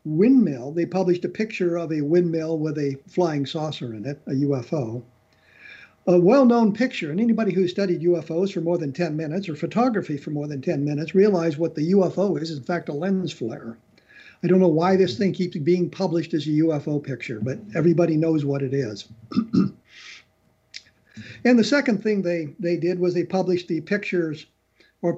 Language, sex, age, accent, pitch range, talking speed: English, male, 50-69, American, 150-190 Hz, 190 wpm